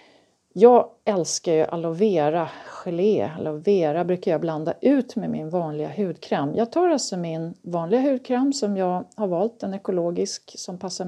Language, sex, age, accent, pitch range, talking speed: Swedish, female, 40-59, native, 165-230 Hz, 150 wpm